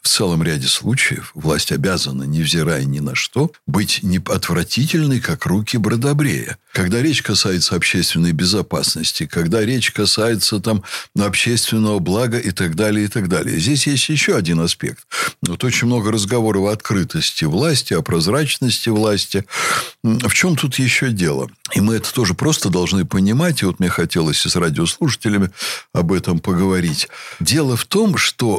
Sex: male